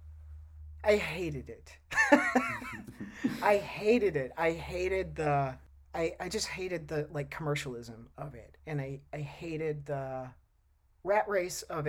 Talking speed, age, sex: 130 wpm, 40-59, male